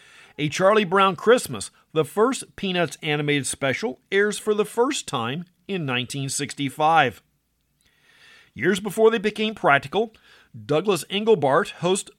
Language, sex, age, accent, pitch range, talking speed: English, male, 40-59, American, 145-195 Hz, 120 wpm